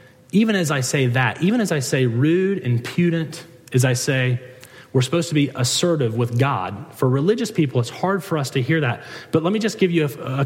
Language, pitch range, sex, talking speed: English, 125-160 Hz, male, 230 wpm